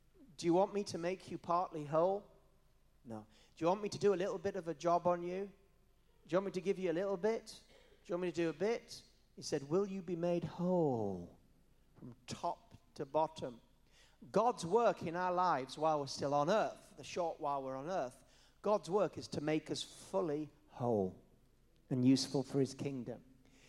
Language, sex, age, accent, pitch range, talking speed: English, male, 40-59, British, 130-185 Hz, 210 wpm